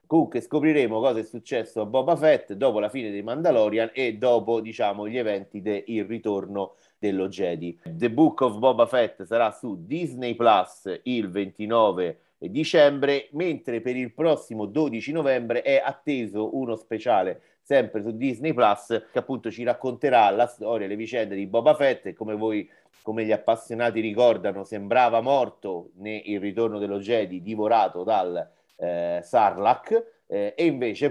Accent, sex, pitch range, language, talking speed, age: native, male, 100-130 Hz, Italian, 150 wpm, 30-49